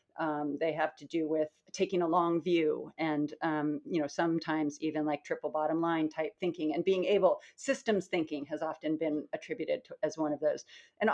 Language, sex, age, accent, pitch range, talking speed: English, female, 40-59, American, 155-185 Hz, 200 wpm